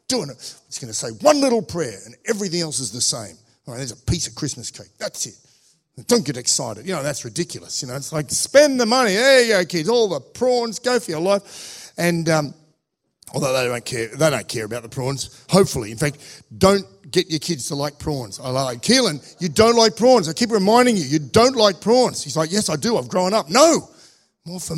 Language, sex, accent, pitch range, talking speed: English, male, Australian, 135-210 Hz, 235 wpm